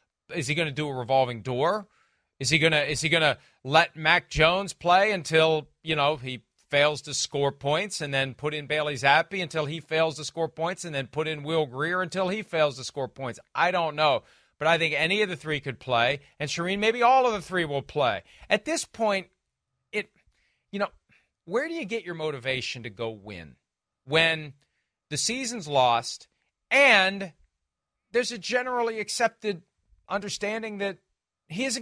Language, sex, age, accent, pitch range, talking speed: English, male, 40-59, American, 140-195 Hz, 190 wpm